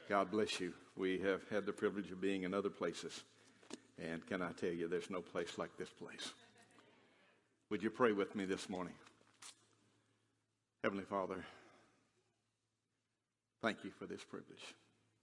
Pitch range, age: 95-120 Hz, 50-69